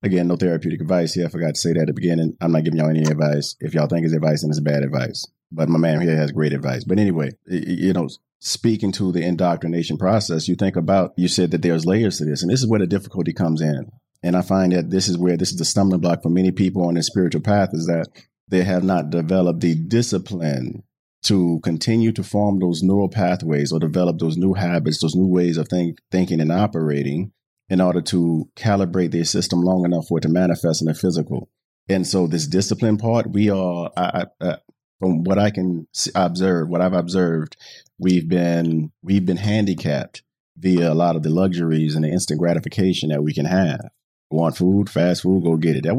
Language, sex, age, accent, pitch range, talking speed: English, male, 30-49, American, 80-95 Hz, 220 wpm